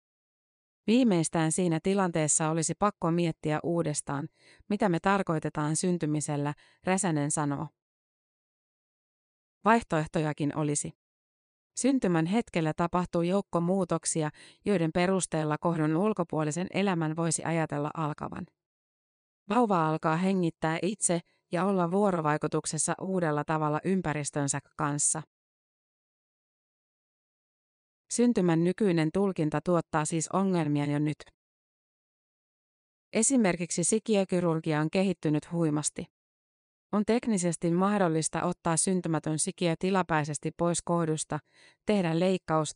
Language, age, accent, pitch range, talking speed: Finnish, 30-49, native, 155-185 Hz, 90 wpm